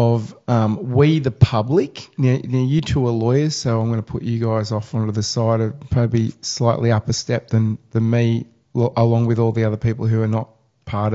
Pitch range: 110-130 Hz